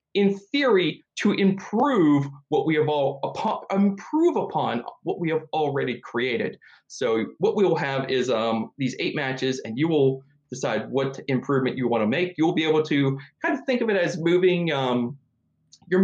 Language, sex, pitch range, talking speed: English, male, 135-185 Hz, 185 wpm